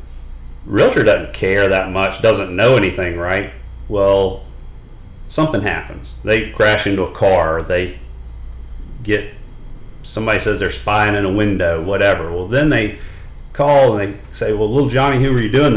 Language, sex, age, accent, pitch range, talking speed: English, male, 40-59, American, 85-120 Hz, 155 wpm